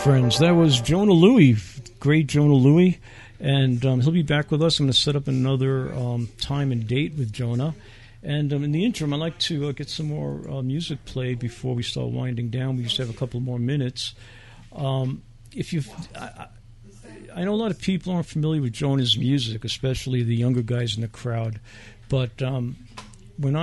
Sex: male